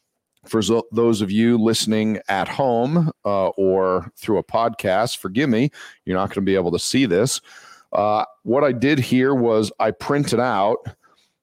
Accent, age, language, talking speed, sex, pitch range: American, 40-59, English, 170 wpm, male, 100-125 Hz